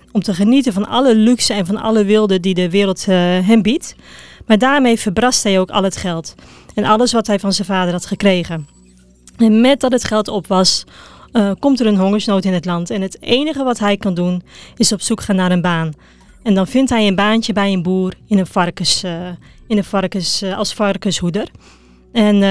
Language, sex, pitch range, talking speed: Dutch, female, 190-225 Hz, 220 wpm